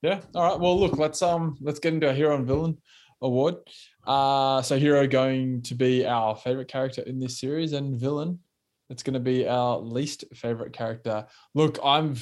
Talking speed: 190 wpm